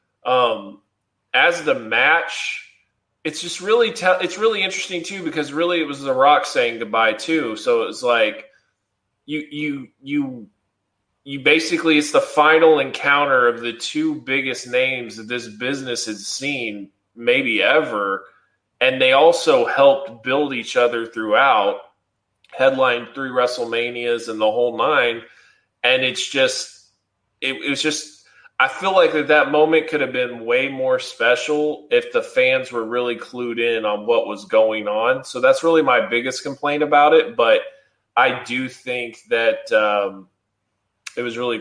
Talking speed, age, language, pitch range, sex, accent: 150 wpm, 20-39, English, 115-170 Hz, male, American